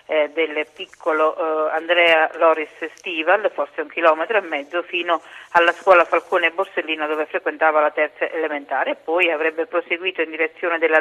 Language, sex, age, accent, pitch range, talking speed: Italian, female, 40-59, native, 155-175 Hz, 160 wpm